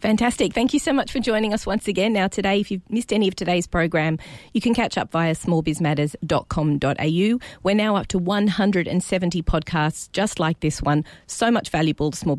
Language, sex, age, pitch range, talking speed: English, female, 40-59, 150-190 Hz, 190 wpm